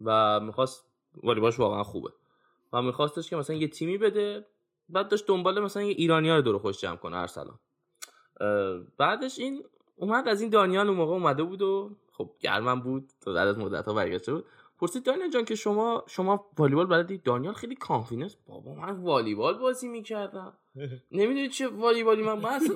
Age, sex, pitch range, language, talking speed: 10-29, male, 150-245 Hz, Persian, 175 wpm